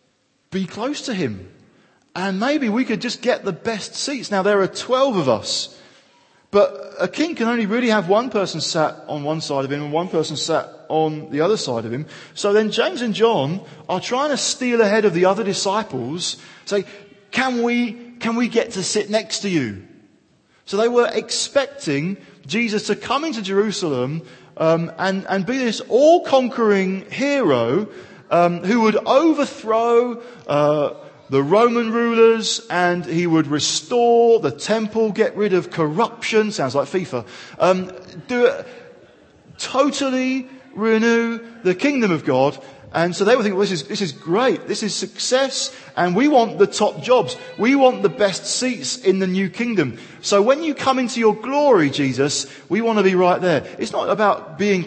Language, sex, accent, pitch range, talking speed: English, male, British, 170-235 Hz, 175 wpm